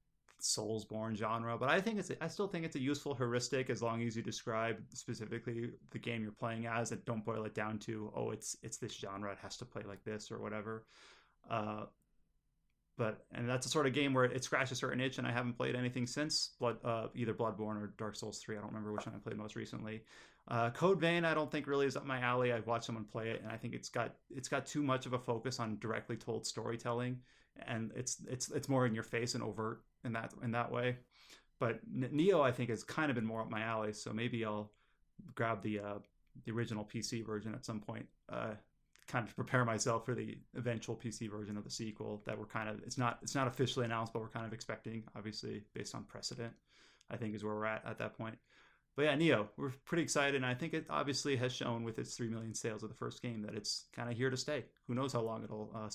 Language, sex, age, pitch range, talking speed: English, male, 30-49, 110-125 Hz, 245 wpm